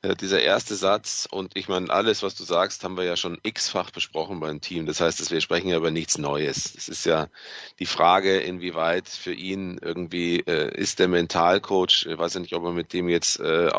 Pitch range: 85-100 Hz